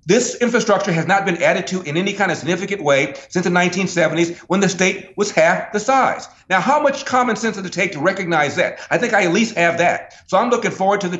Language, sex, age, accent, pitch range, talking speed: English, male, 50-69, American, 160-220 Hz, 250 wpm